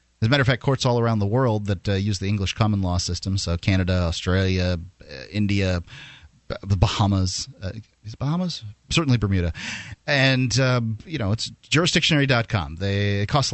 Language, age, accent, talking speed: English, 30-49, American, 170 wpm